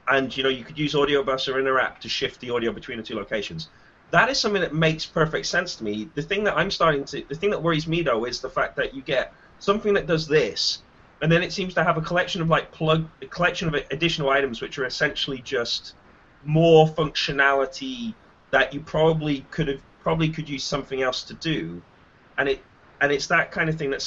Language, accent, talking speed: English, British, 225 wpm